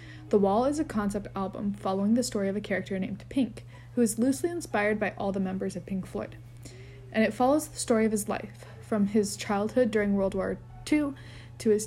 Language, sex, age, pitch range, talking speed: English, female, 20-39, 190-225 Hz, 210 wpm